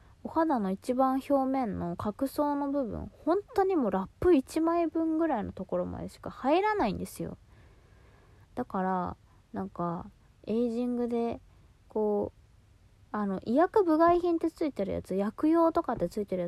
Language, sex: Japanese, female